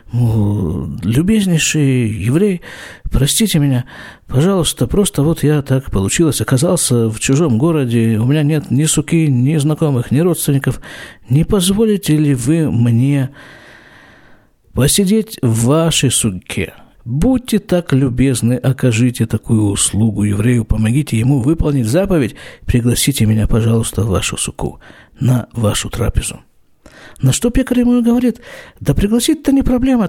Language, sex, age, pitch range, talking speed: Russian, male, 50-69, 120-195 Hz, 120 wpm